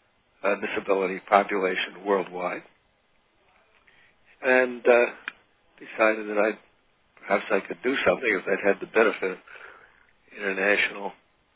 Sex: male